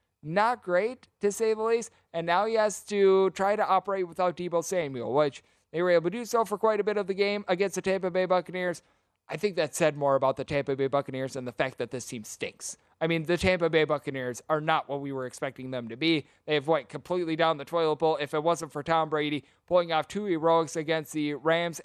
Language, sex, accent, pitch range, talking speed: English, male, American, 145-180 Hz, 245 wpm